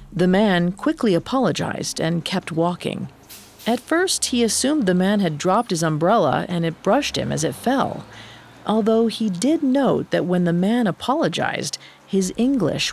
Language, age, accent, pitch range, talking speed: English, 40-59, American, 170-235 Hz, 160 wpm